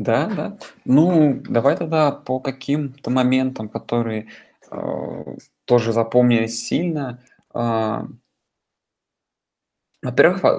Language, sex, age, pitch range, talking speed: Russian, male, 20-39, 115-130 Hz, 85 wpm